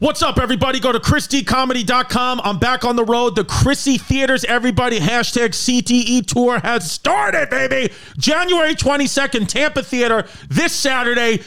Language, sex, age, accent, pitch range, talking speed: English, male, 40-59, American, 225-255 Hz, 140 wpm